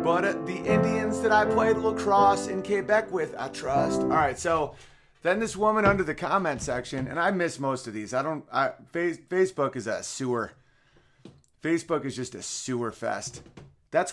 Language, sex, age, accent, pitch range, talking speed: English, male, 30-49, American, 120-160 Hz, 175 wpm